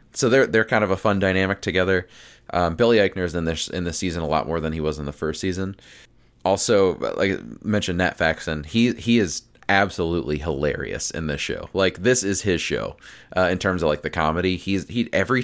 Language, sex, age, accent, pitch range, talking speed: English, male, 20-39, American, 80-100 Hz, 220 wpm